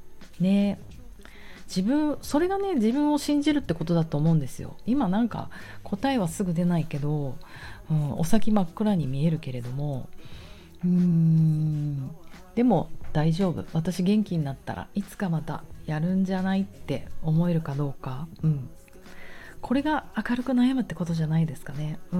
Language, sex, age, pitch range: Japanese, female, 30-49, 145-200 Hz